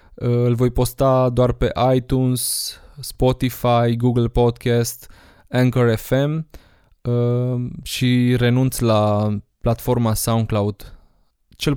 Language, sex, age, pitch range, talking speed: Romanian, male, 20-39, 110-130 Hz, 85 wpm